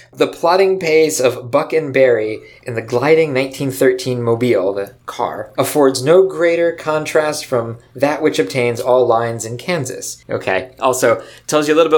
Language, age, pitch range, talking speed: English, 20-39, 125-165 Hz, 165 wpm